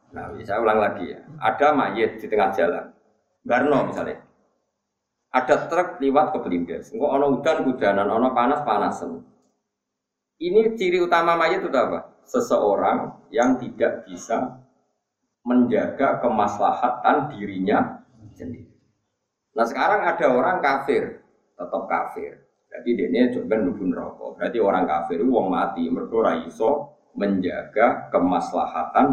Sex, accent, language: male, native, Indonesian